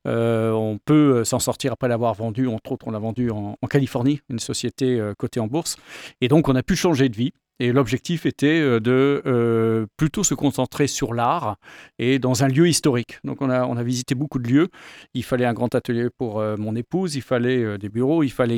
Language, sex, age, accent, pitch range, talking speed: French, male, 40-59, French, 120-150 Hz, 225 wpm